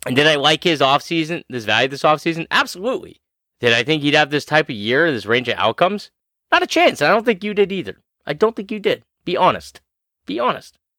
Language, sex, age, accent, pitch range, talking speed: English, male, 30-49, American, 130-185 Hz, 230 wpm